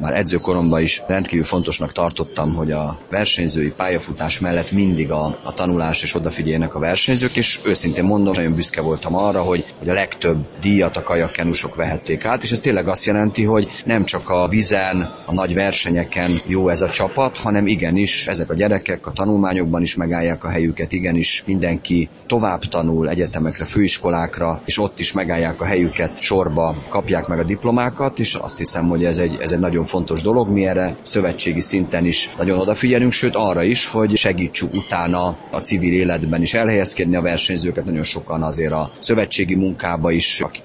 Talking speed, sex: 175 wpm, male